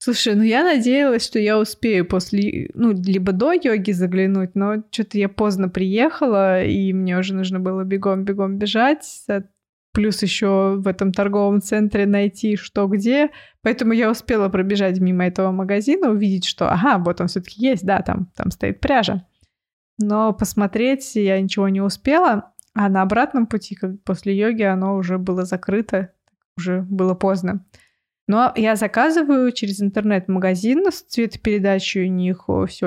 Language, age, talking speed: Russian, 20-39, 150 wpm